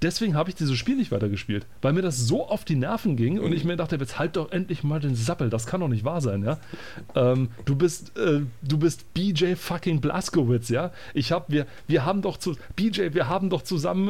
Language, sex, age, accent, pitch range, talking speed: German, male, 40-59, German, 120-165 Hz, 235 wpm